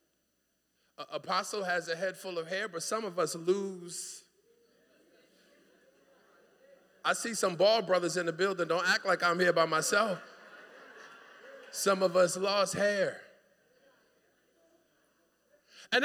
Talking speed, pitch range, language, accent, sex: 125 wpm, 180-280 Hz, English, American, male